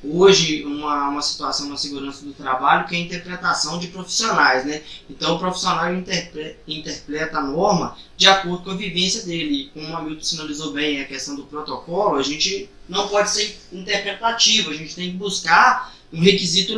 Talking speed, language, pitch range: 180 wpm, Portuguese, 145-195 Hz